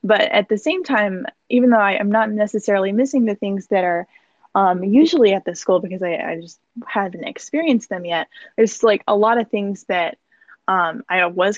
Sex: female